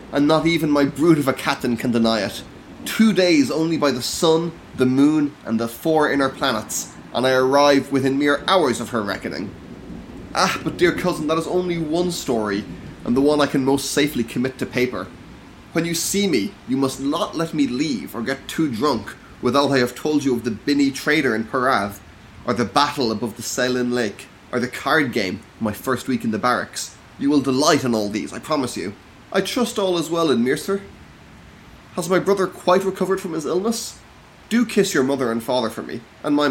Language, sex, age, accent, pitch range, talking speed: English, male, 20-39, Irish, 120-160 Hz, 210 wpm